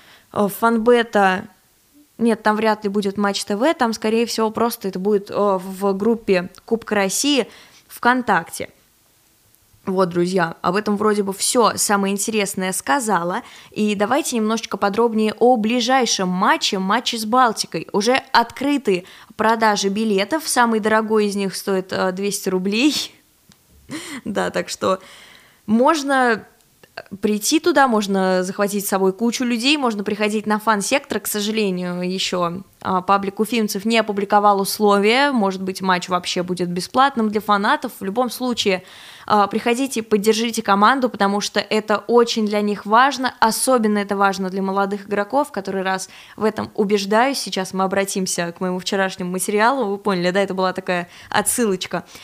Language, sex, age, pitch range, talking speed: Russian, female, 20-39, 195-230 Hz, 140 wpm